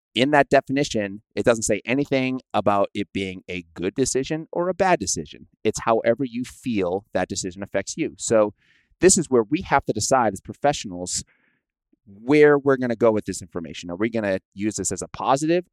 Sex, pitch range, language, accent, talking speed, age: male, 100-130 Hz, English, American, 200 wpm, 30-49